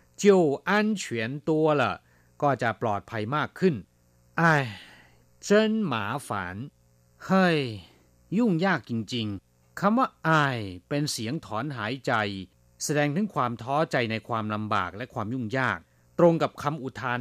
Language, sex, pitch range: Thai, male, 100-145 Hz